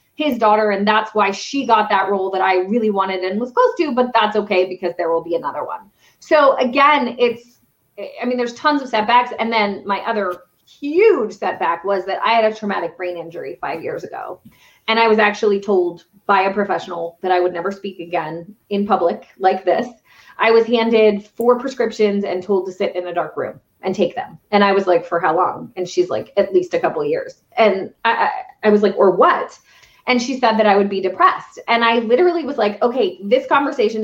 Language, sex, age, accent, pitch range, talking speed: English, female, 30-49, American, 195-265 Hz, 220 wpm